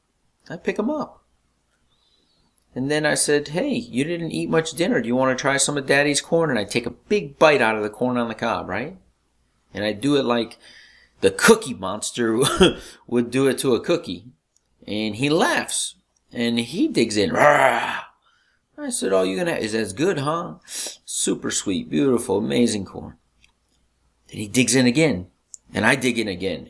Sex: male